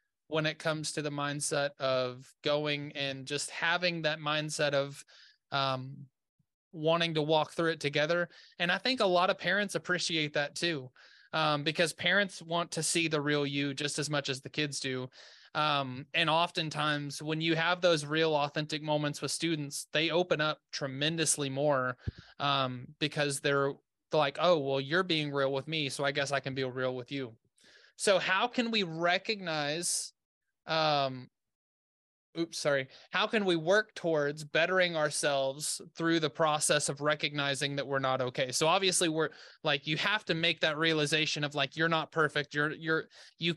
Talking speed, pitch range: 175 wpm, 140-165 Hz